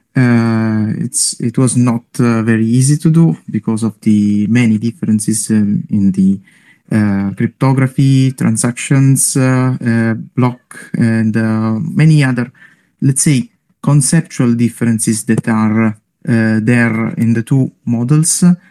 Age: 20-39